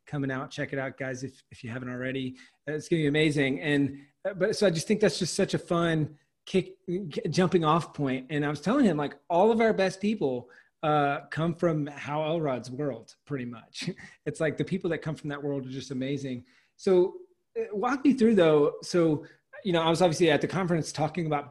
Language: English